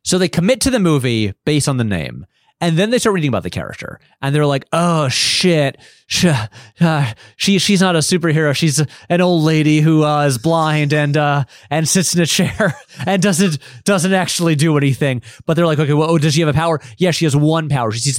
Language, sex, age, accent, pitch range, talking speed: English, male, 30-49, American, 140-190 Hz, 230 wpm